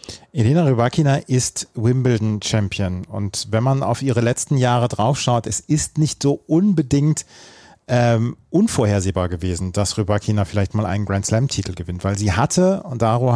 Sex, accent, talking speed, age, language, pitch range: male, German, 145 wpm, 40-59, German, 115-150 Hz